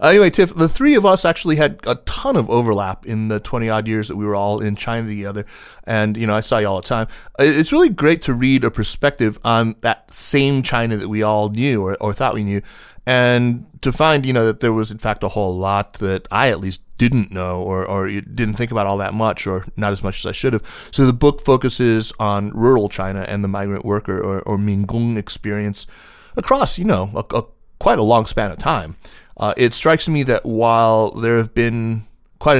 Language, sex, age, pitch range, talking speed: English, male, 30-49, 100-120 Hz, 230 wpm